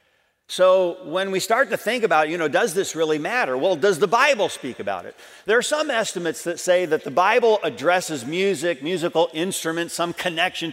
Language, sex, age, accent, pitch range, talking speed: English, male, 50-69, American, 155-210 Hz, 195 wpm